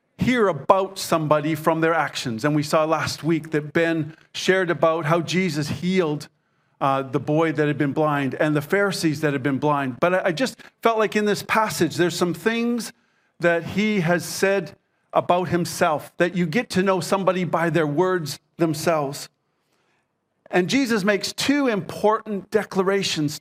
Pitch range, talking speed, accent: 165-200 Hz, 165 wpm, American